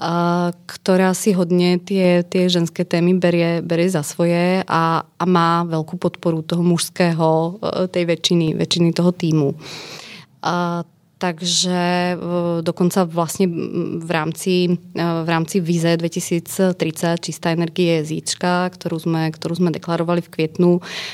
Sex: female